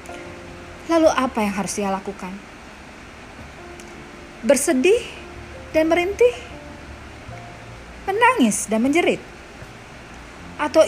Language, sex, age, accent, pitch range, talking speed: Indonesian, female, 30-49, native, 195-295 Hz, 70 wpm